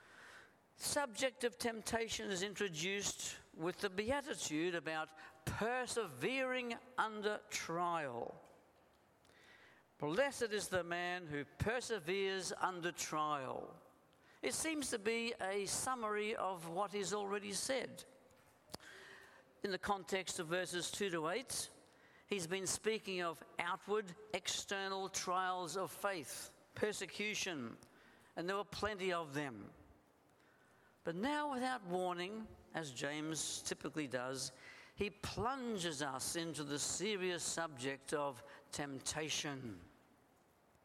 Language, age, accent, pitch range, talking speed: English, 60-79, British, 160-225 Hz, 105 wpm